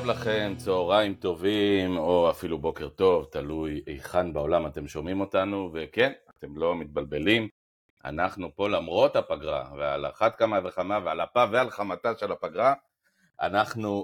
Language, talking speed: Hebrew, 135 wpm